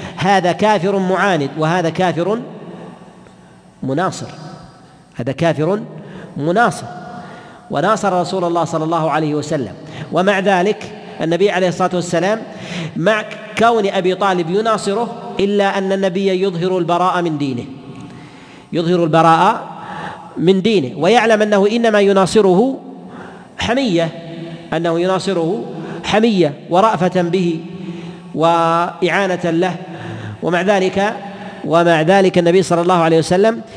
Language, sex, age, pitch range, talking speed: Arabic, male, 50-69, 160-195 Hz, 105 wpm